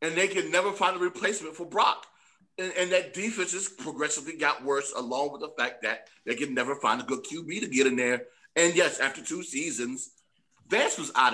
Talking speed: 215 wpm